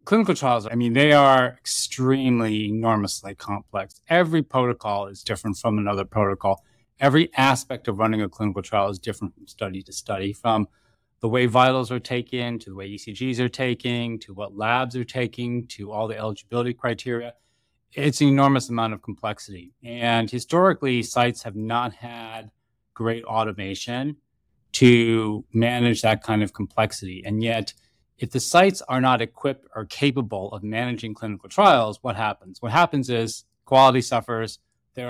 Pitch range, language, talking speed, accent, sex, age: 105-125 Hz, English, 160 wpm, American, male, 30-49